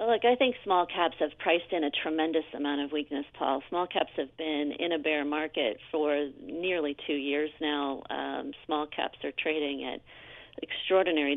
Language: English